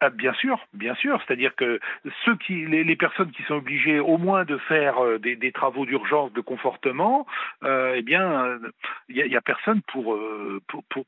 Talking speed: 190 wpm